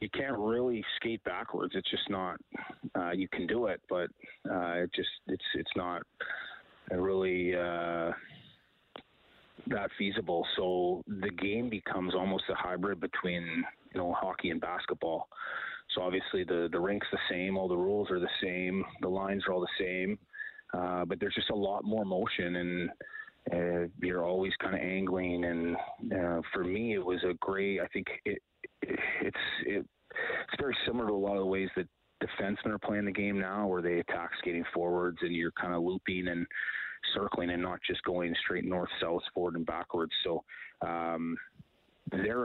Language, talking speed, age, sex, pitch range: English, 175 wpm, 30-49, male, 85-95 Hz